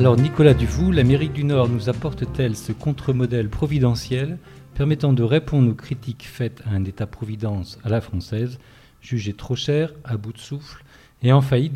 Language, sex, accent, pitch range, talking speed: French, male, French, 110-135 Hz, 170 wpm